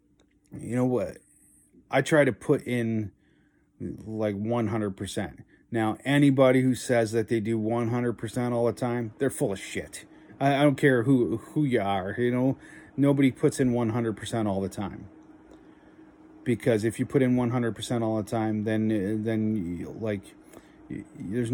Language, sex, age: English, male, 30-49